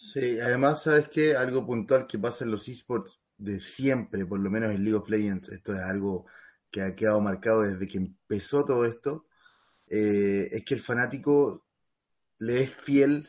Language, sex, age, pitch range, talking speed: Spanish, male, 30-49, 105-135 Hz, 180 wpm